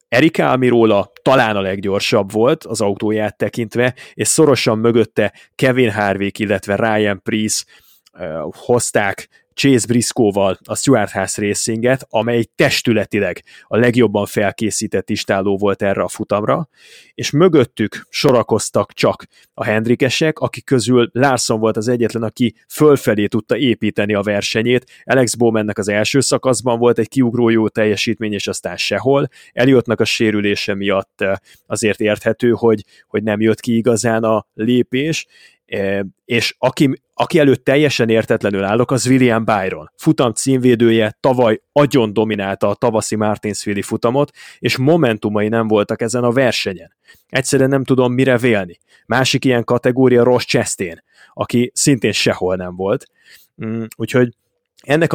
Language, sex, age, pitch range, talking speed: Hungarian, male, 30-49, 105-125 Hz, 135 wpm